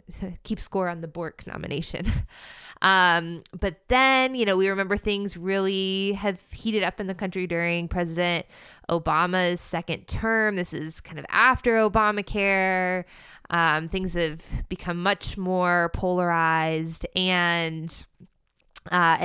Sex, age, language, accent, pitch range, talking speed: female, 20-39, English, American, 165-205 Hz, 130 wpm